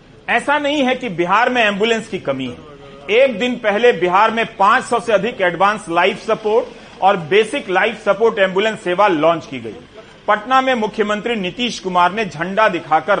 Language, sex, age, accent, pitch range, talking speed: Hindi, male, 40-59, native, 180-230 Hz, 175 wpm